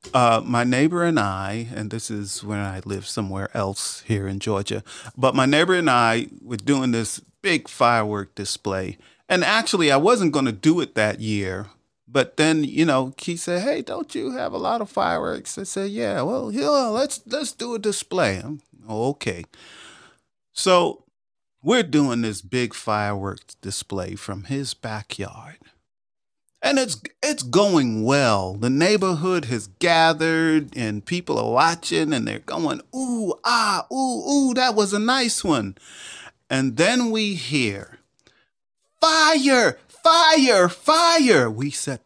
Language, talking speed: English, 155 wpm